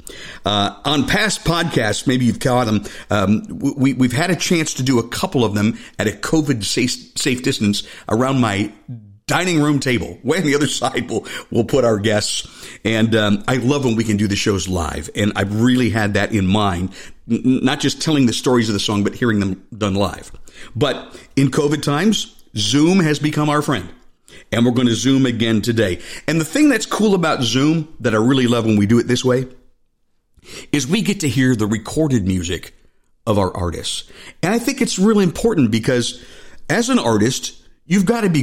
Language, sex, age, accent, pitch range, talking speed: English, male, 50-69, American, 105-145 Hz, 200 wpm